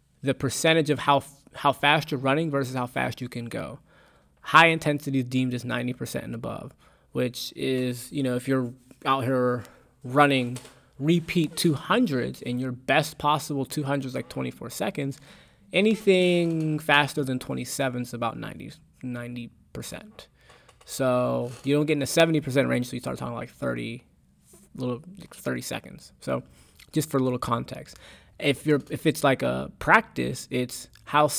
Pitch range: 125-150 Hz